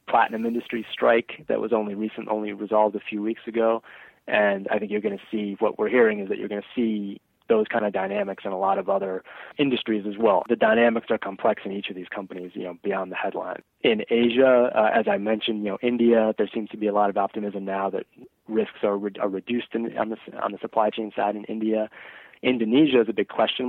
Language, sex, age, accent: English, male, 20-39, American